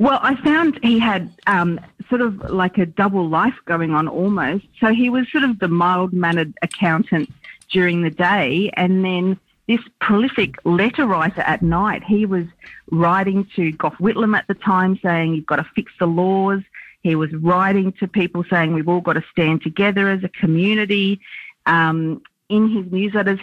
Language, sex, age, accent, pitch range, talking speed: English, female, 40-59, Australian, 165-210 Hz, 175 wpm